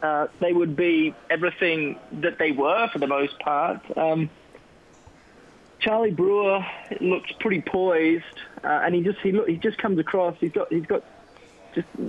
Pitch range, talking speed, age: 145-180 Hz, 150 wpm, 20-39